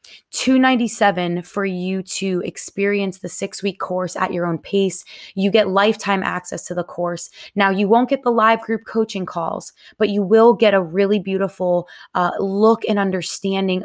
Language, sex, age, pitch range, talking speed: English, female, 20-39, 175-215 Hz, 175 wpm